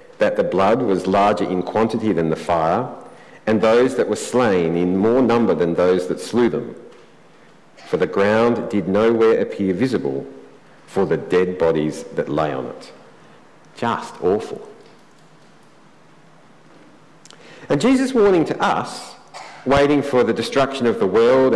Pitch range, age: 105-160 Hz, 50-69